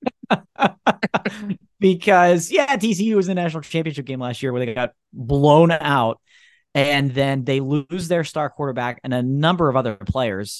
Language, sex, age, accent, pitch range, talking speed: English, male, 30-49, American, 110-165 Hz, 160 wpm